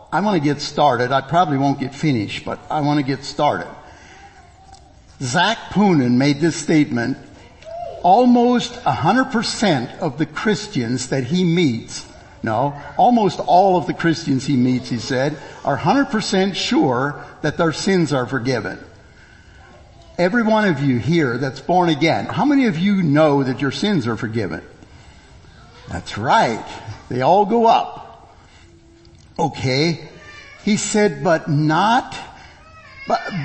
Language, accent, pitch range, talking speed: English, American, 125-185 Hz, 140 wpm